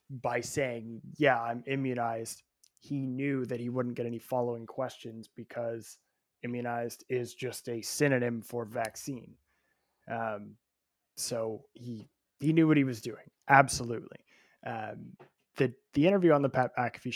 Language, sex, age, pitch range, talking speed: English, male, 20-39, 120-140 Hz, 140 wpm